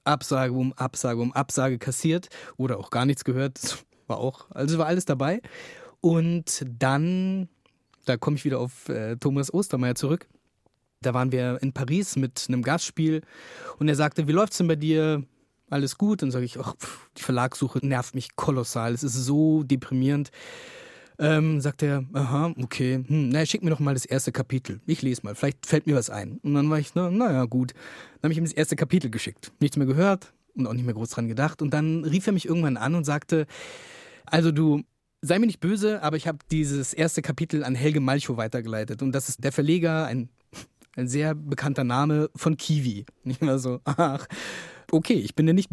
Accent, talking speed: German, 200 wpm